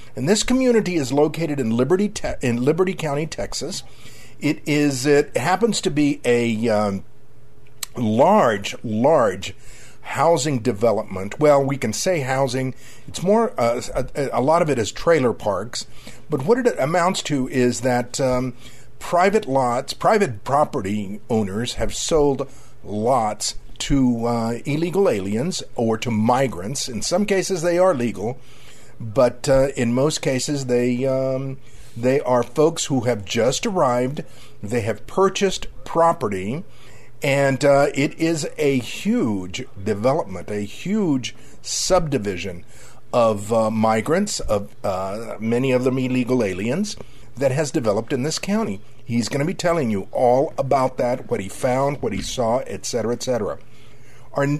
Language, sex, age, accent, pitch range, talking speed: English, male, 50-69, American, 120-155 Hz, 145 wpm